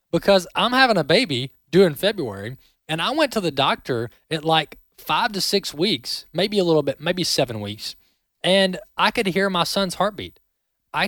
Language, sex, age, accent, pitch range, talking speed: English, male, 20-39, American, 125-175 Hz, 185 wpm